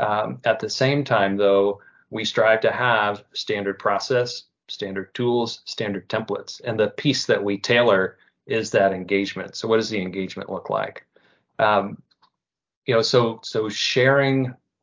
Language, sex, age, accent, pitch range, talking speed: English, male, 30-49, American, 100-120 Hz, 155 wpm